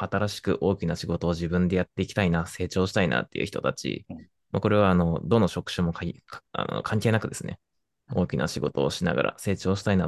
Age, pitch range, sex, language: 20-39, 90-110 Hz, male, Japanese